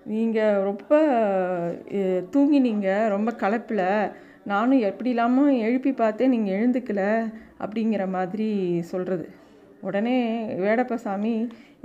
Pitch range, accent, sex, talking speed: 210-265 Hz, native, female, 85 wpm